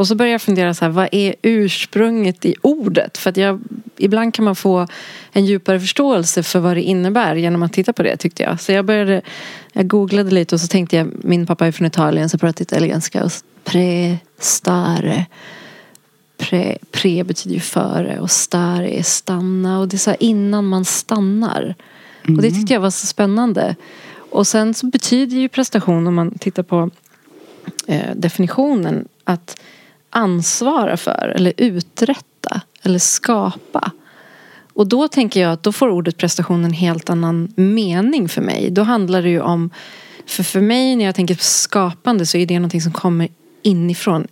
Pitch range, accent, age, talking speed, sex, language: 175-210 Hz, native, 30-49, 175 wpm, female, Swedish